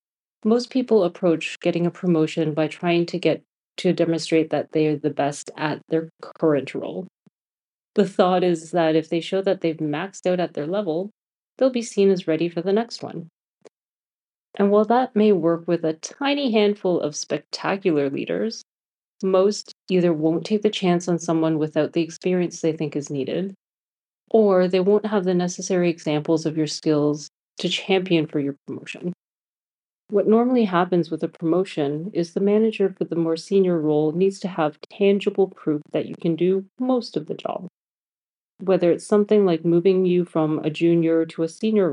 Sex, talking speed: female, 180 wpm